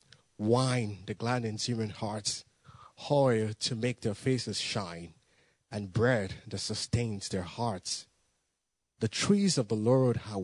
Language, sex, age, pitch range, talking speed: English, male, 30-49, 105-125 Hz, 130 wpm